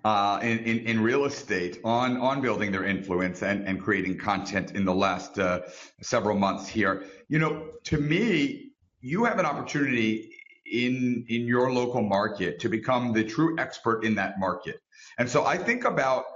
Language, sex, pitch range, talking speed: English, male, 115-155 Hz, 175 wpm